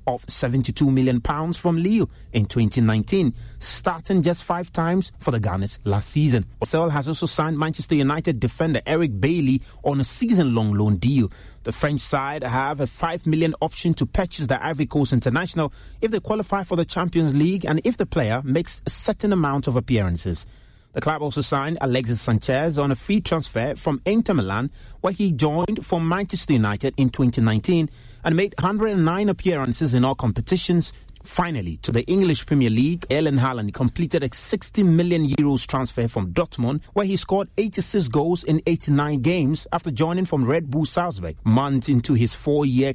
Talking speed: 170 wpm